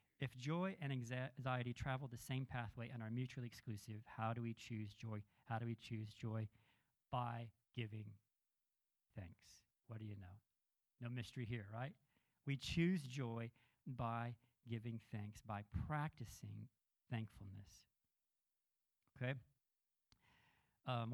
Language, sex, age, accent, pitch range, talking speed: English, male, 40-59, American, 115-135 Hz, 125 wpm